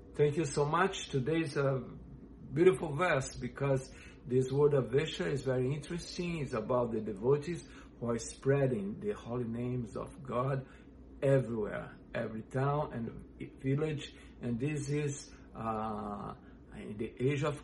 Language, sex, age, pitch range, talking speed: English, male, 60-79, 125-145 Hz, 145 wpm